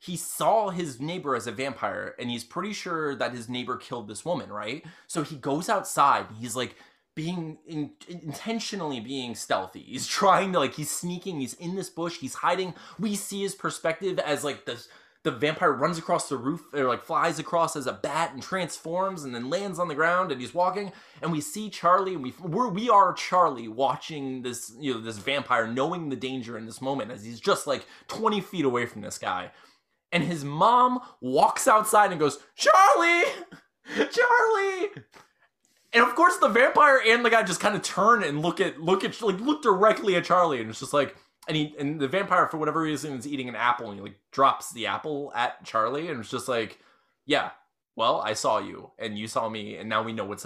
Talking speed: 210 wpm